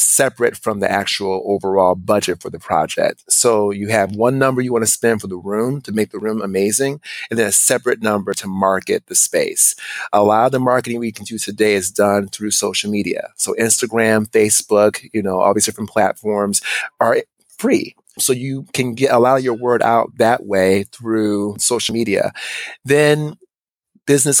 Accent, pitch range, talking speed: American, 105-120 Hz, 190 wpm